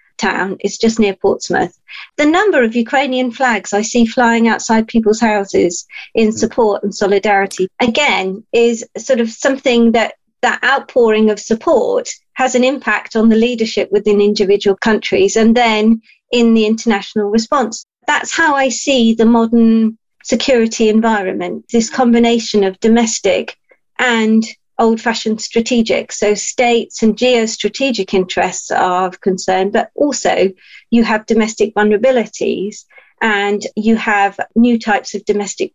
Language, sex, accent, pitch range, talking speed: English, female, British, 210-250 Hz, 135 wpm